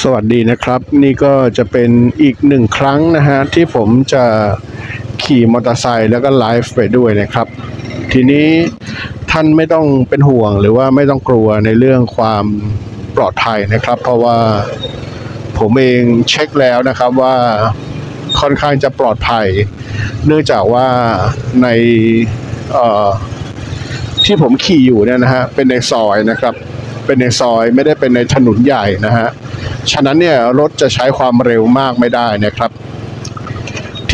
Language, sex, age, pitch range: Thai, male, 60-79, 115-140 Hz